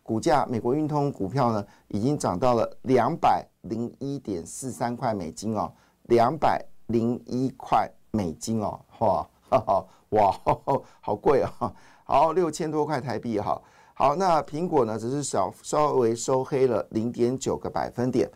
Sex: male